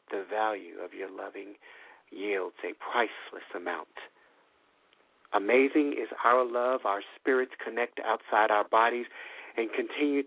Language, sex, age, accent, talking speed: English, male, 50-69, American, 125 wpm